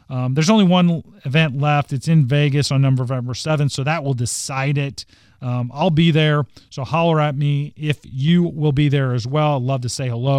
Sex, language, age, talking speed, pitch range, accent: male, English, 40-59, 215 wpm, 120-155 Hz, American